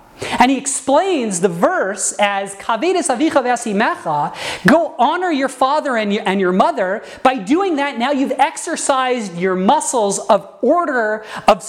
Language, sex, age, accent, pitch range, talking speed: English, male, 30-49, American, 205-300 Hz, 145 wpm